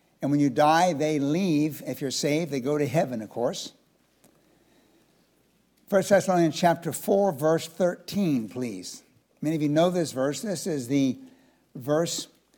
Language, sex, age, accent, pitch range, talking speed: English, male, 60-79, American, 150-200 Hz, 155 wpm